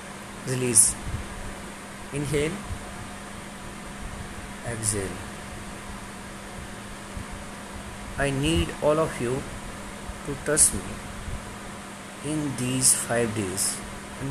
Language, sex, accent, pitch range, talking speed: English, male, Indian, 105-150 Hz, 65 wpm